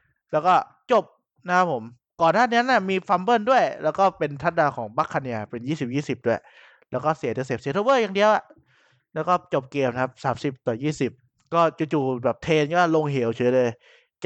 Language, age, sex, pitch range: Thai, 20-39, male, 130-165 Hz